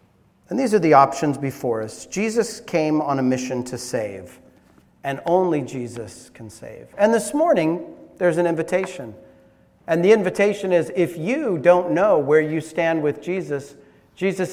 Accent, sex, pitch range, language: American, male, 130-175 Hz, English